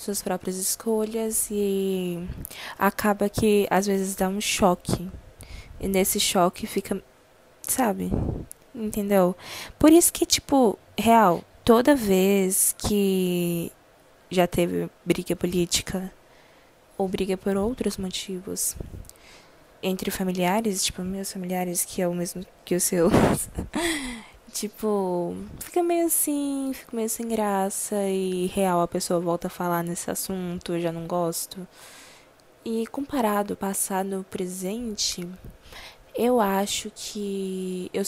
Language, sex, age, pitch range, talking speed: Portuguese, female, 10-29, 180-210 Hz, 120 wpm